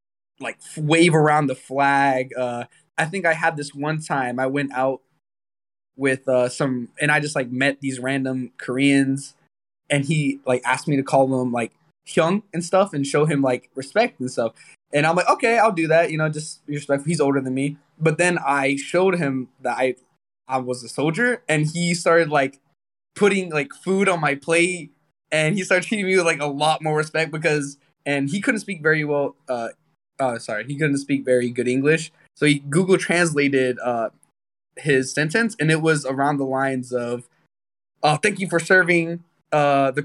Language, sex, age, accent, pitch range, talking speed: English, male, 20-39, American, 135-170 Hz, 195 wpm